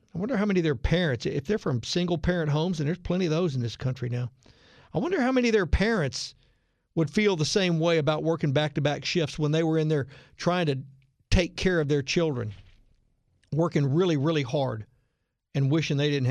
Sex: male